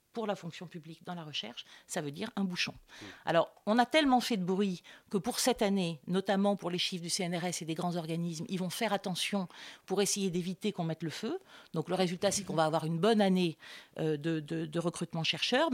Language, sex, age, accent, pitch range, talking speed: French, female, 50-69, French, 175-225 Hz, 225 wpm